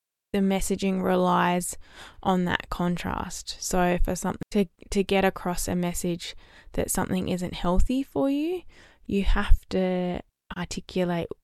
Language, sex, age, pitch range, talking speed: English, female, 10-29, 175-200 Hz, 130 wpm